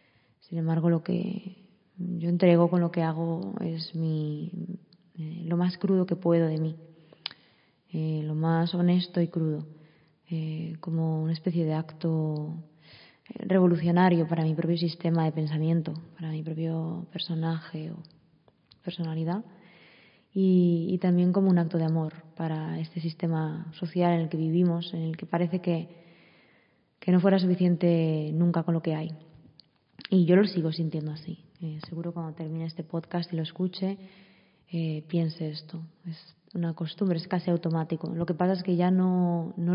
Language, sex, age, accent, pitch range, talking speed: Spanish, female, 20-39, Spanish, 160-180 Hz, 160 wpm